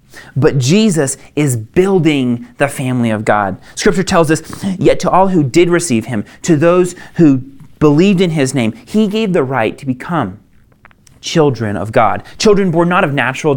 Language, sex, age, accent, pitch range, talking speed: English, male, 30-49, American, 120-165 Hz, 170 wpm